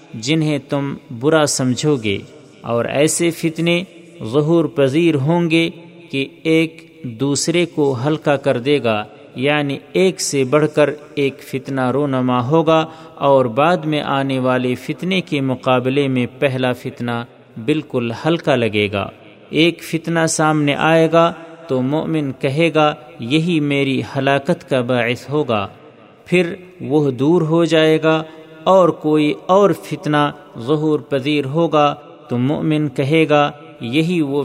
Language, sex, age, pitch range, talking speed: Urdu, male, 50-69, 135-160 Hz, 135 wpm